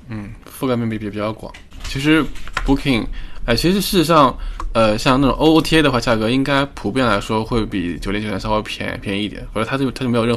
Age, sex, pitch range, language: 20-39, male, 100-120 Hz, Chinese